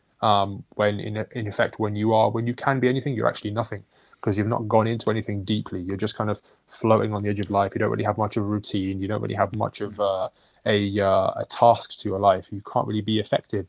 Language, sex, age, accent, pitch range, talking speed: English, male, 20-39, British, 100-115 Hz, 265 wpm